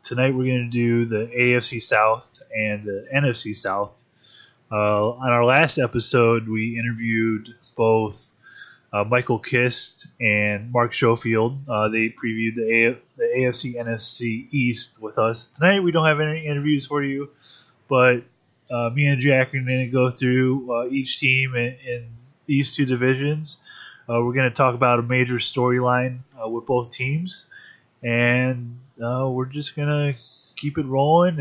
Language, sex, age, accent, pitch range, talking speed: English, male, 20-39, American, 120-140 Hz, 155 wpm